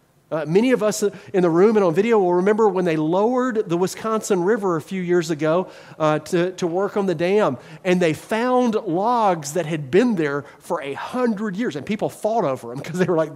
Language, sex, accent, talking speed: English, male, American, 225 wpm